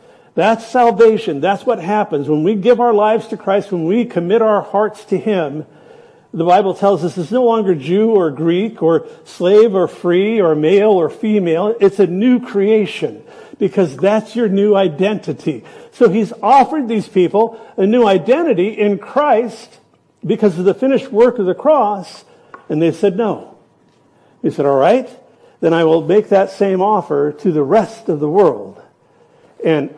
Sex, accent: male, American